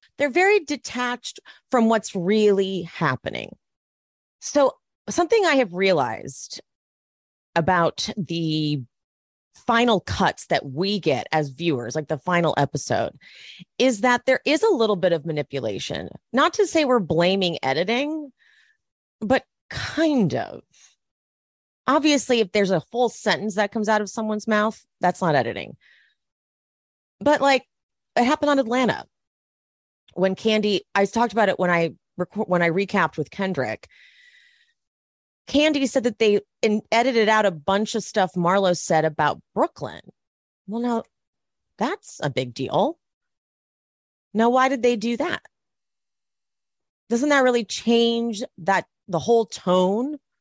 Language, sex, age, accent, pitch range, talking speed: English, female, 30-49, American, 180-260 Hz, 135 wpm